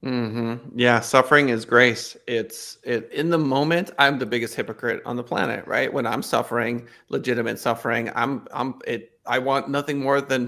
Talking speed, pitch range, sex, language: 180 wpm, 120-155 Hz, male, English